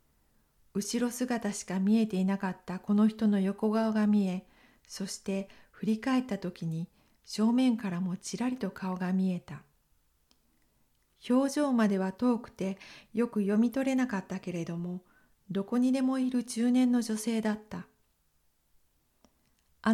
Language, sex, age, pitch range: Japanese, female, 50-69, 190-235 Hz